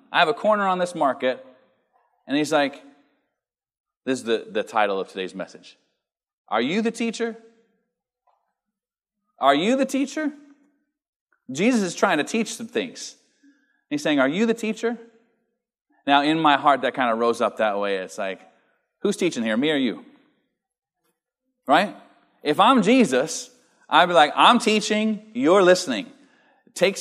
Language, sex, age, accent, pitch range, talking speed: English, male, 30-49, American, 155-255 Hz, 155 wpm